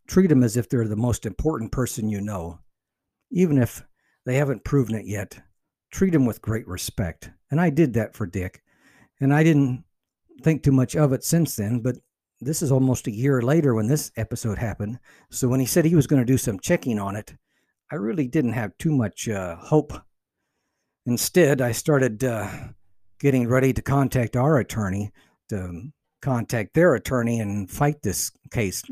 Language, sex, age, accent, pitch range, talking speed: English, male, 60-79, American, 110-145 Hz, 185 wpm